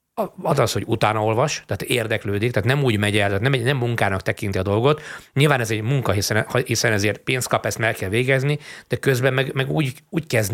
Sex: male